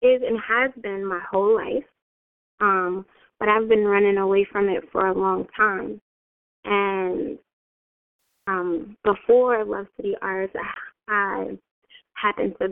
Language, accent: English, American